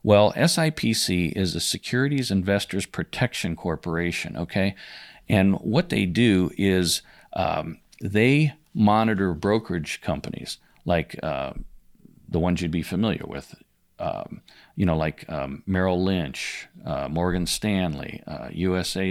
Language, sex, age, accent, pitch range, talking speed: English, male, 50-69, American, 85-105 Hz, 120 wpm